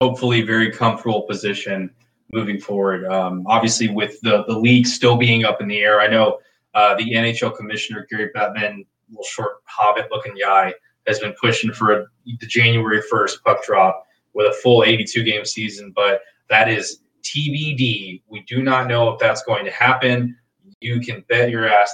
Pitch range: 110-125 Hz